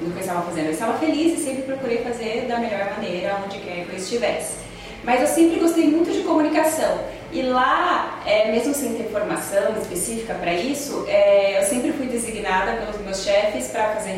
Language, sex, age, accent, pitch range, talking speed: Portuguese, female, 20-39, Brazilian, 205-260 Hz, 200 wpm